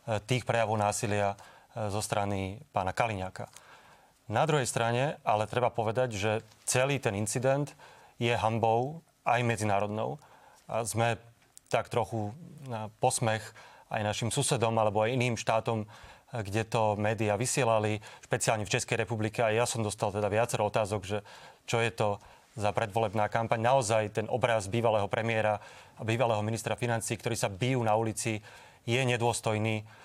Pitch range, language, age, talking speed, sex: 110-125 Hz, Slovak, 30-49, 145 wpm, male